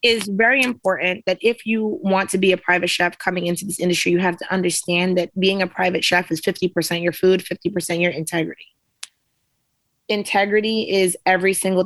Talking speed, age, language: 180 wpm, 20-39, English